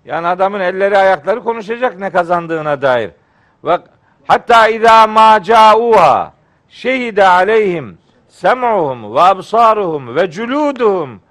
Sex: male